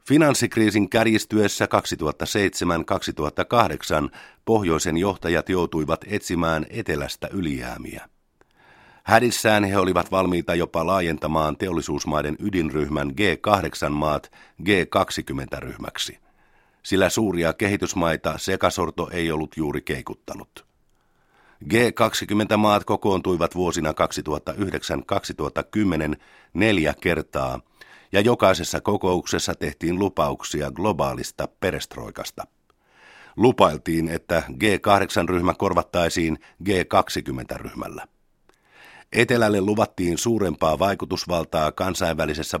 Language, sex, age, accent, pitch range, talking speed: Finnish, male, 50-69, native, 80-100 Hz, 70 wpm